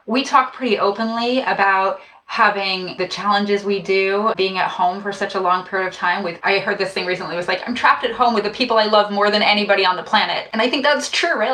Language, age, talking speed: English, 20-39, 260 wpm